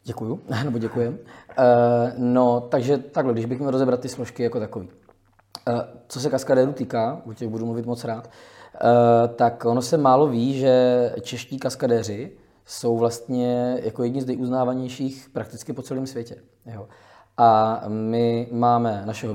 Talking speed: 150 wpm